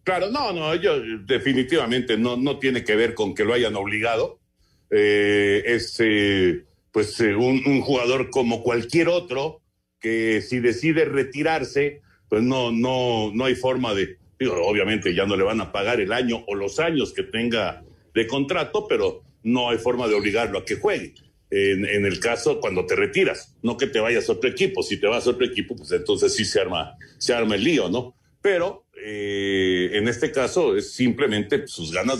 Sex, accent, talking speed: male, Mexican, 190 wpm